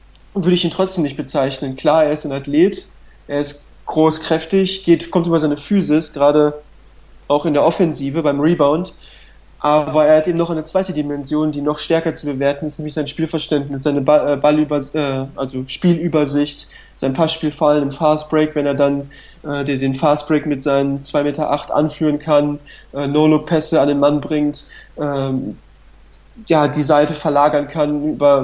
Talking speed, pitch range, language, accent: 160 wpm, 145-155 Hz, German, German